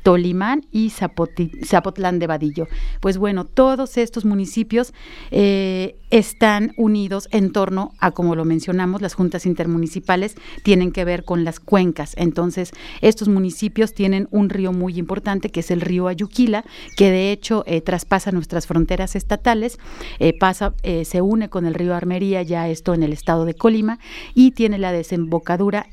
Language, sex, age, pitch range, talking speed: Spanish, female, 40-59, 170-205 Hz, 160 wpm